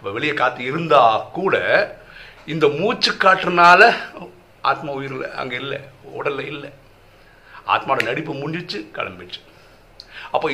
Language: Tamil